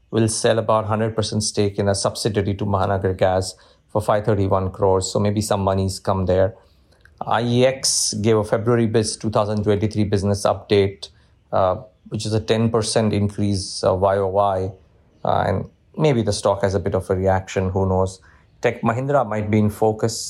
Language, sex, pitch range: English, male, 95-110 Hz